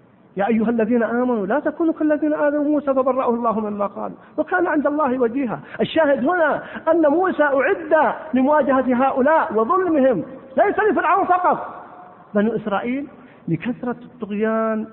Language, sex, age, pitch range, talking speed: Arabic, male, 50-69, 195-270 Hz, 135 wpm